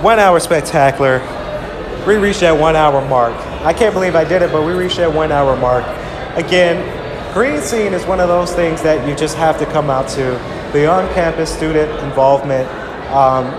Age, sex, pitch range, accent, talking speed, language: 30-49, male, 135-165 Hz, American, 190 wpm, English